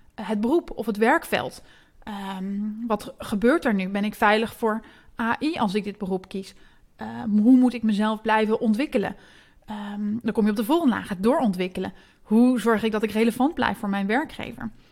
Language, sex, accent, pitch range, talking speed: Dutch, female, Dutch, 210-250 Hz, 190 wpm